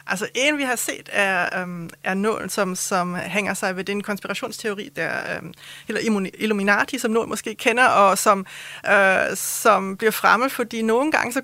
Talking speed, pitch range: 180 wpm, 190-235 Hz